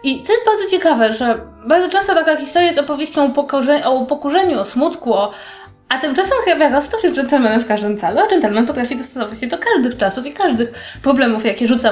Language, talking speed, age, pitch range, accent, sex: Polish, 195 wpm, 20-39, 225-330 Hz, native, female